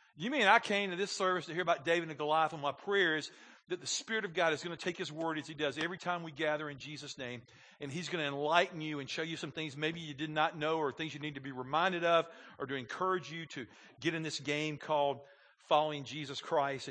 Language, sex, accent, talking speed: English, male, American, 265 wpm